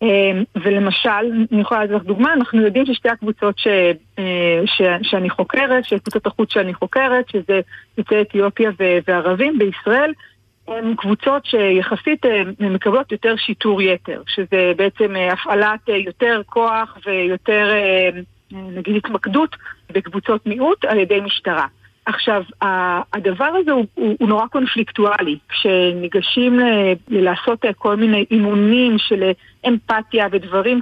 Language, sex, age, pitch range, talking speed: Hebrew, female, 50-69, 195-235 Hz, 115 wpm